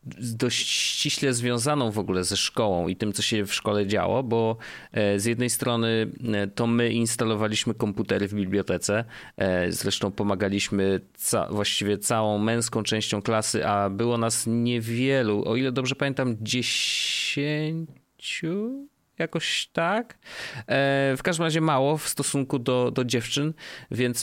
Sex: male